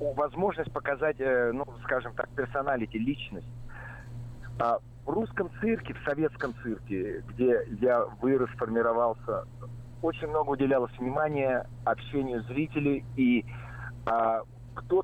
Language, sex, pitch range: Russian, male, 120-150 Hz